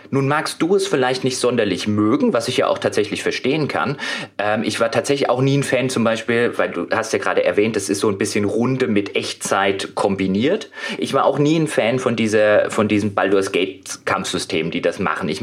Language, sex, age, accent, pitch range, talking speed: German, male, 30-49, German, 105-135 Hz, 220 wpm